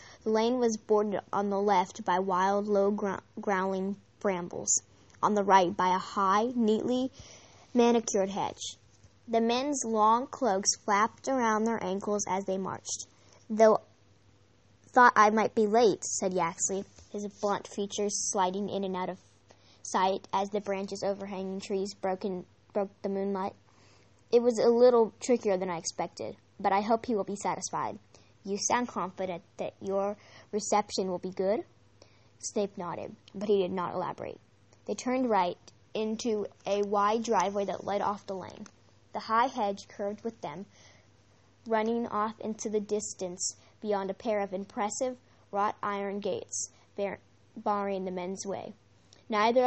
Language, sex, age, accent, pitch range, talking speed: English, female, 10-29, American, 185-215 Hz, 150 wpm